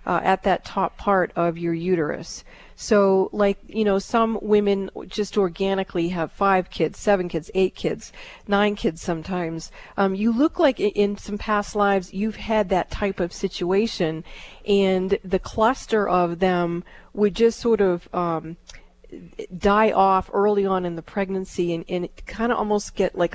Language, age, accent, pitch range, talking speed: English, 40-59, American, 175-205 Hz, 165 wpm